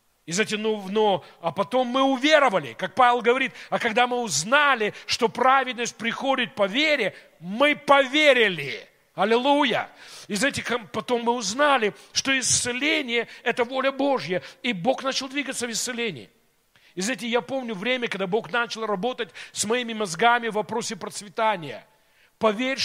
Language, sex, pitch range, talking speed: Russian, male, 205-250 Hz, 145 wpm